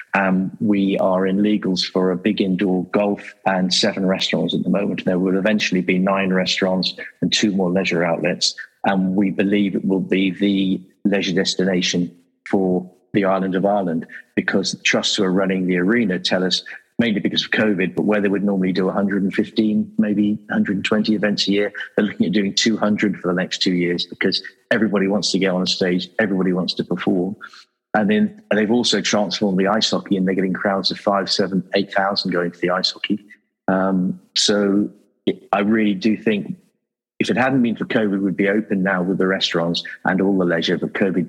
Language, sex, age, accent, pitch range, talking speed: English, male, 50-69, British, 95-105 Hz, 200 wpm